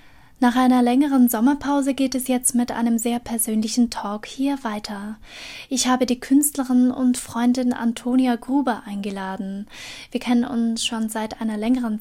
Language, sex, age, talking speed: German, female, 10-29, 150 wpm